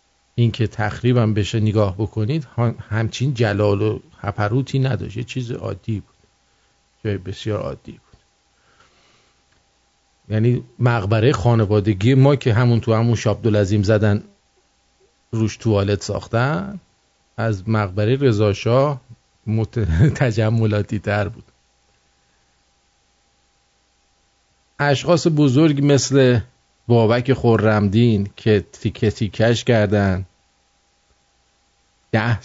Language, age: English, 50-69